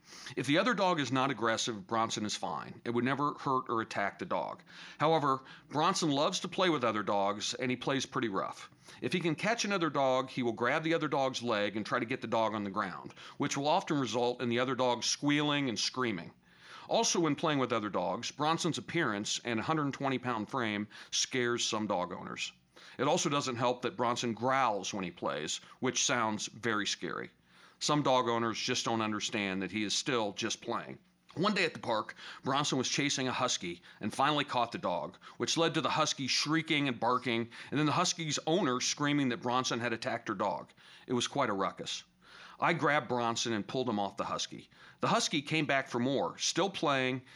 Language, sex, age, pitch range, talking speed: English, male, 40-59, 115-150 Hz, 205 wpm